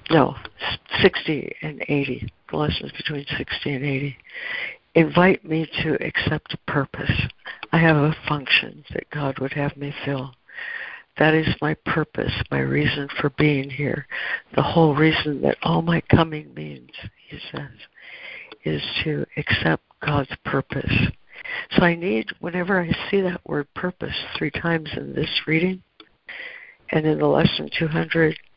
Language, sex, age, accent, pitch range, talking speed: English, female, 60-79, American, 140-170 Hz, 145 wpm